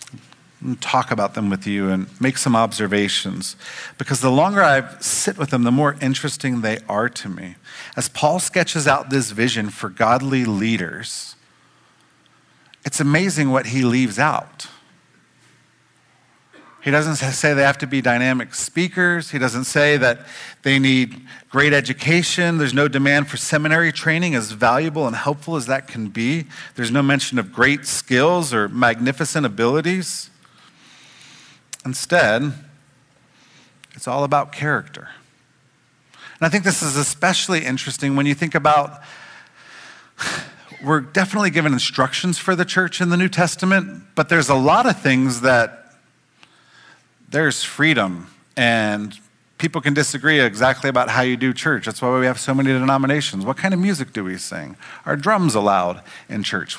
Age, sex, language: 40-59, male, English